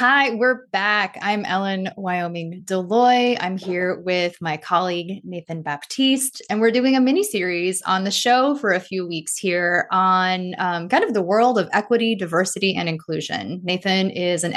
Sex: female